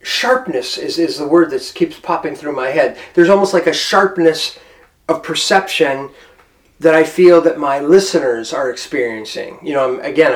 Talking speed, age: 175 wpm, 30-49